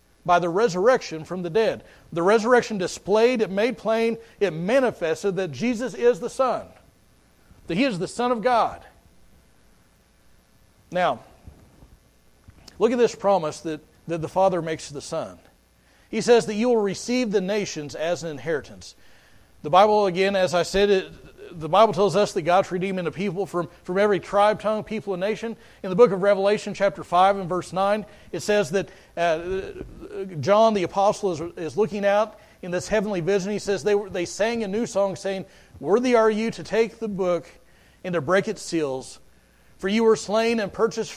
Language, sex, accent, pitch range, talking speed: English, male, American, 170-215 Hz, 185 wpm